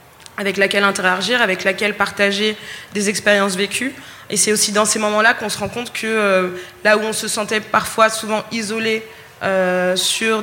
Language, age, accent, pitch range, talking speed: French, 20-39, French, 190-215 Hz, 180 wpm